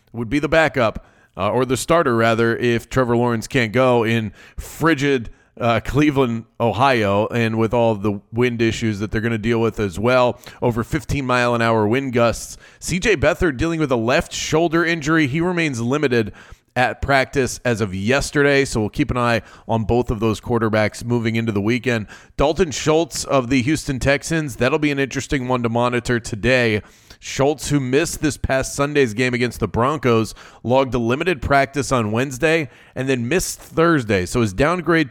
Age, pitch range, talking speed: 30-49, 115-140 Hz, 185 wpm